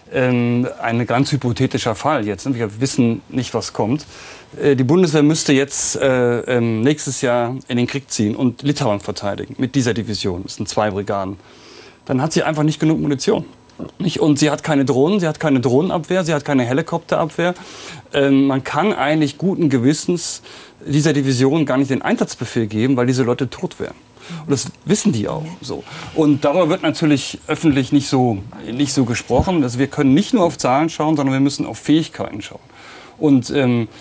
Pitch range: 120-150 Hz